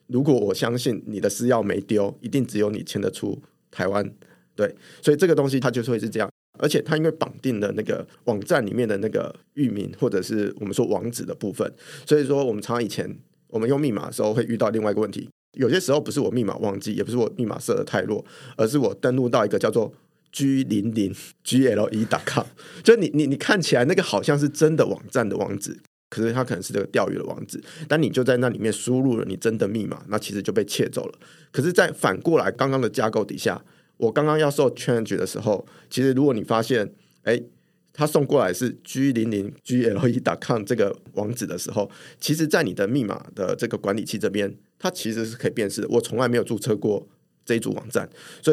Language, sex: Chinese, male